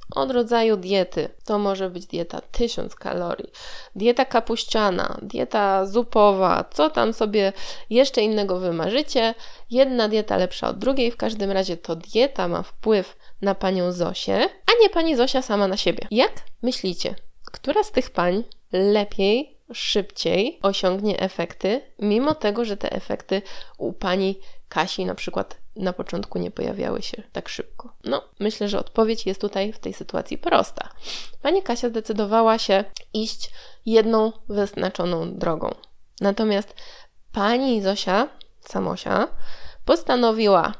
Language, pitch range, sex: Polish, 190-245 Hz, female